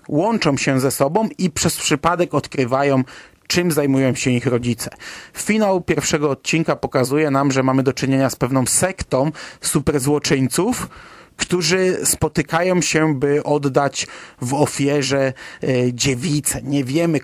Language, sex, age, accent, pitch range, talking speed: Polish, male, 30-49, native, 130-155 Hz, 125 wpm